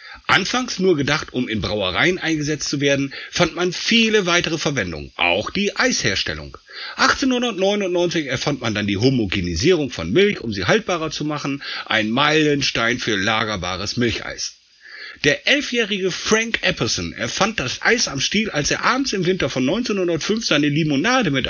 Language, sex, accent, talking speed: German, male, German, 150 wpm